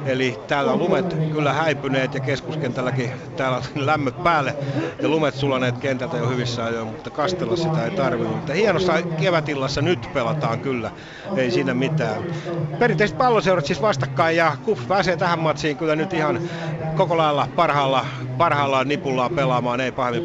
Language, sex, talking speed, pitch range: Finnish, male, 155 wpm, 125-160 Hz